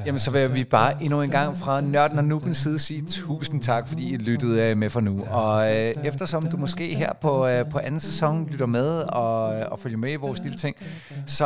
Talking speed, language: 230 wpm, Danish